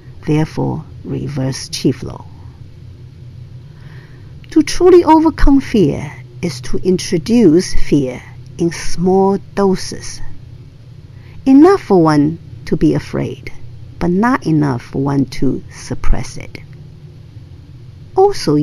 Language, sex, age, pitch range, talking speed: English, female, 50-69, 125-175 Hz, 95 wpm